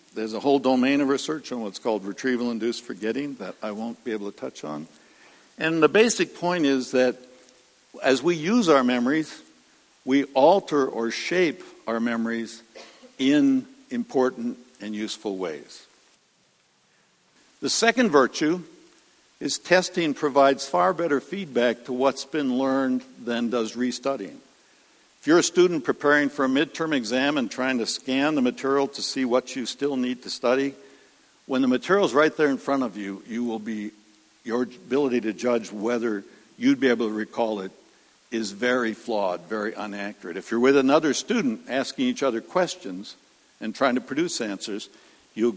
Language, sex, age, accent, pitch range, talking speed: English, male, 60-79, American, 115-155 Hz, 160 wpm